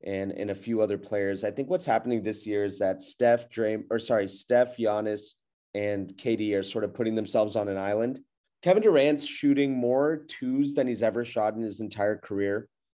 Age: 30-49